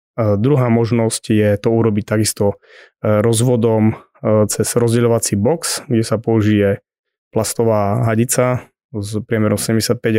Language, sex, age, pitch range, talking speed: Slovak, male, 20-39, 105-120 Hz, 110 wpm